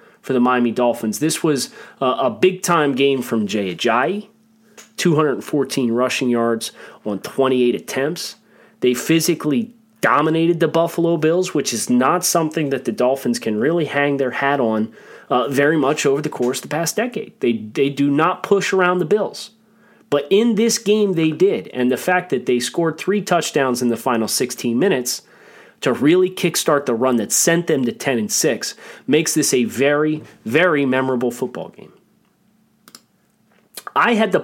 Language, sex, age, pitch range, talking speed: English, male, 30-49, 130-195 Hz, 170 wpm